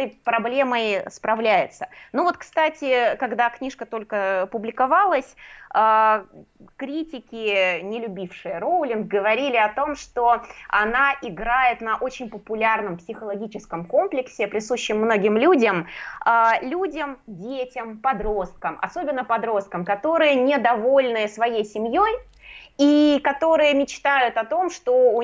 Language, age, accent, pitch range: Russian, 20-39, native, 210-270 Hz